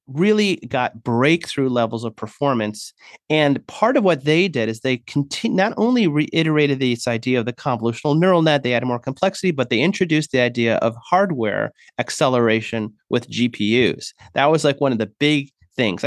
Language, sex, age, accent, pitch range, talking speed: English, male, 30-49, American, 120-165 Hz, 175 wpm